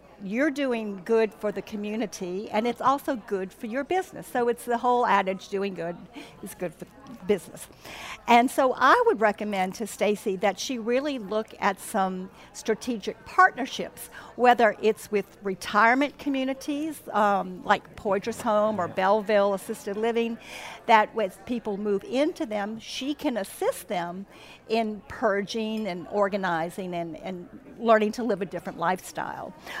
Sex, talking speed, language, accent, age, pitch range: female, 150 wpm, English, American, 50-69, 195-240 Hz